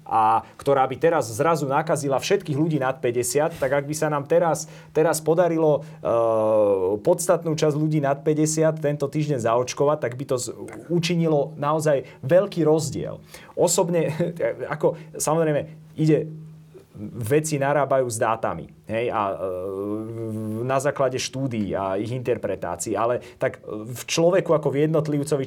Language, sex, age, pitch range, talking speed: Slovak, male, 30-49, 115-160 Hz, 140 wpm